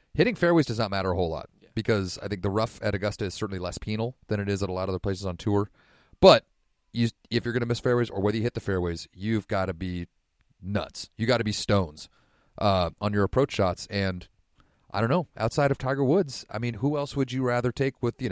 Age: 30-49